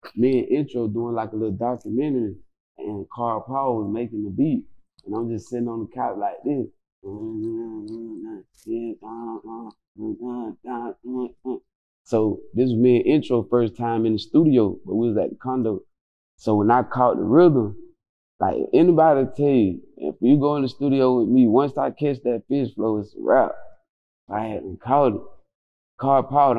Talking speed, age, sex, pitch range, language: 180 wpm, 20-39, male, 110-135 Hz, English